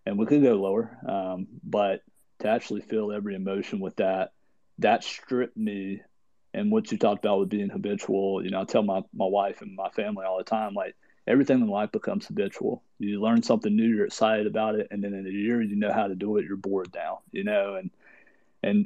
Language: English